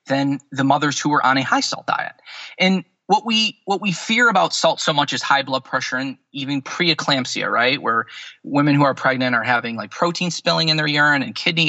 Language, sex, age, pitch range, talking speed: English, male, 20-39, 135-185 Hz, 220 wpm